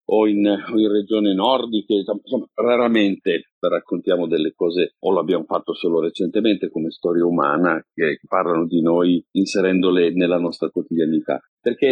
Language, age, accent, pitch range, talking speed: Italian, 40-59, native, 90-110 Hz, 135 wpm